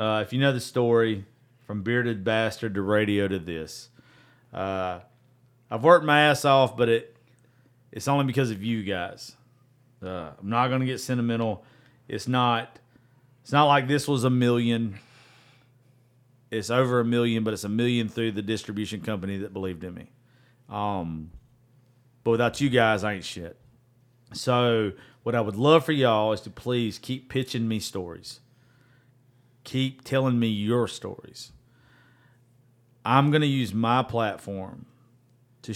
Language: English